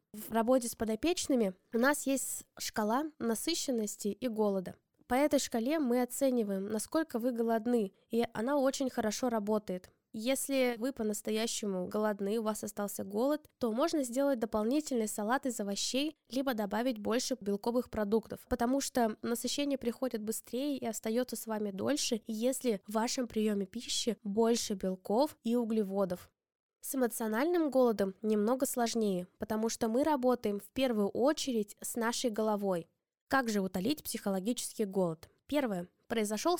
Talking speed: 140 wpm